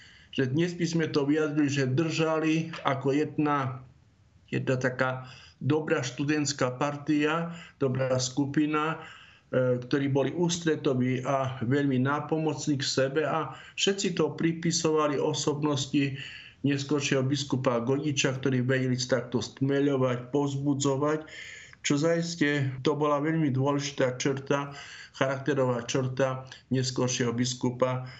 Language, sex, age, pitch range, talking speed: Slovak, male, 50-69, 130-155 Hz, 105 wpm